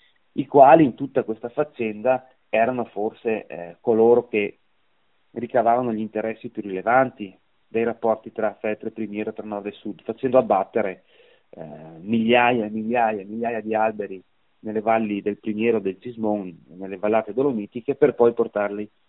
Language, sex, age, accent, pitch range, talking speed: Italian, male, 30-49, native, 110-135 Hz, 150 wpm